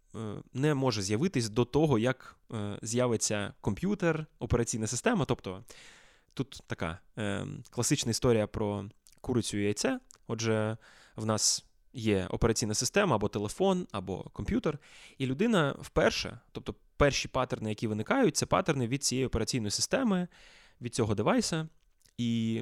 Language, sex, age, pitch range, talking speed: Ukrainian, male, 20-39, 110-140 Hz, 125 wpm